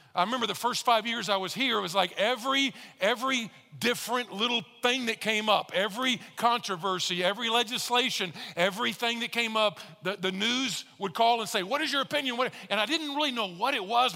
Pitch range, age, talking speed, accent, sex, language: 175-230 Hz, 50-69, 205 wpm, American, male, English